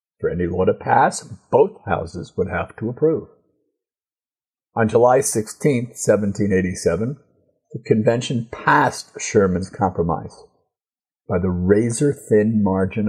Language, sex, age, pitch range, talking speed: English, male, 50-69, 95-140 Hz, 110 wpm